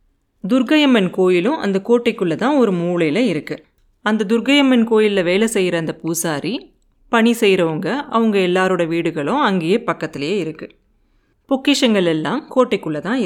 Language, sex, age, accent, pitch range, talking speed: Tamil, female, 30-49, native, 180-255 Hz, 120 wpm